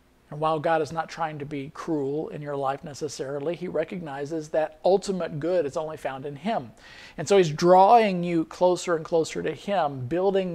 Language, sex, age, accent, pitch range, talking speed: English, male, 50-69, American, 150-190 Hz, 195 wpm